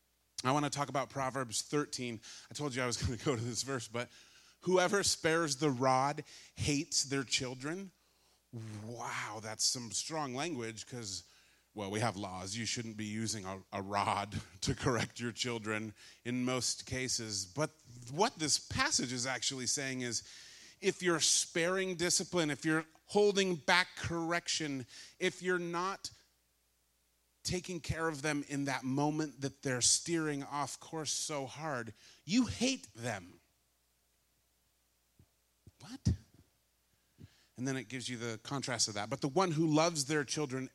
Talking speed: 155 wpm